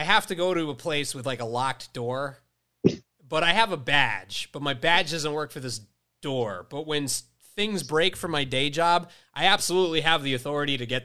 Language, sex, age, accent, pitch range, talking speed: English, male, 30-49, American, 120-155 Hz, 215 wpm